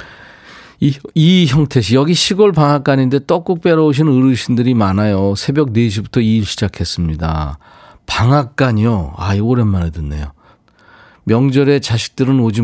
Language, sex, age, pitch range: Korean, male, 40-59, 100-135 Hz